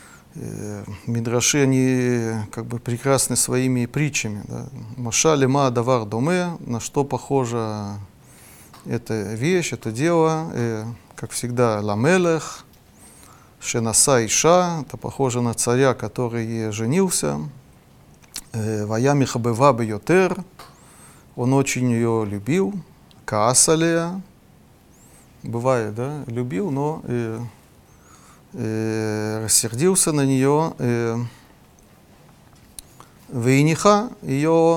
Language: Russian